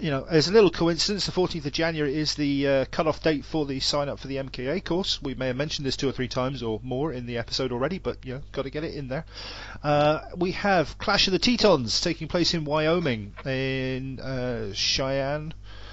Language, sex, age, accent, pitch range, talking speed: English, male, 40-59, British, 115-160 Hz, 230 wpm